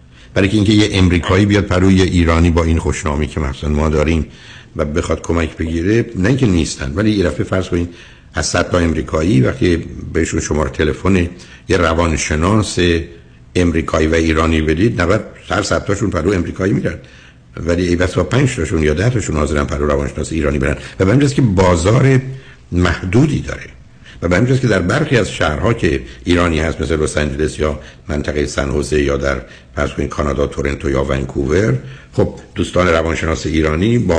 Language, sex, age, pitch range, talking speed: Persian, male, 60-79, 75-95 Hz, 160 wpm